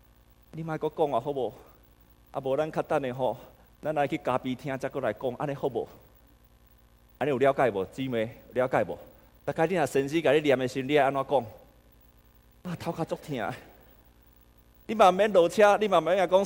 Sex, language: male, Chinese